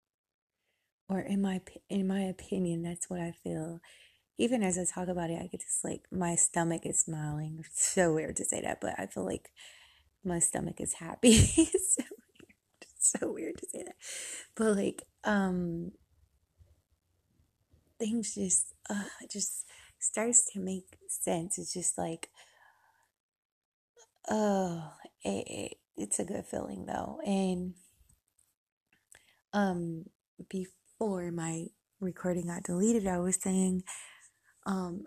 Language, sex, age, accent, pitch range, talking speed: English, female, 20-39, American, 175-210 Hz, 140 wpm